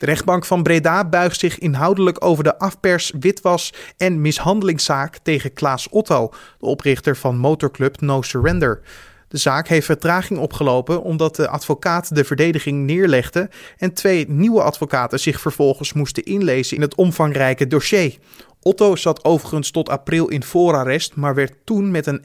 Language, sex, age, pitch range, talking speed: Dutch, male, 30-49, 135-175 Hz, 155 wpm